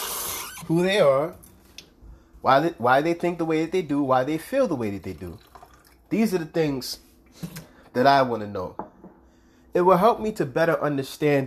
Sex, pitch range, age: male, 125-180 Hz, 30-49